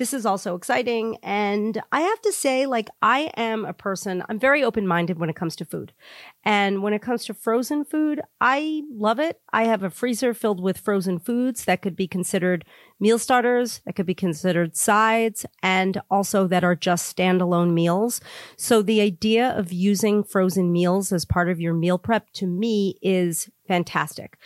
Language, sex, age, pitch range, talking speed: English, female, 40-59, 180-225 Hz, 185 wpm